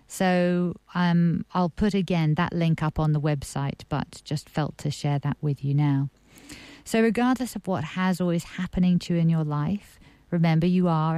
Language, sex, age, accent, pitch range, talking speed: English, female, 50-69, British, 150-180 Hz, 190 wpm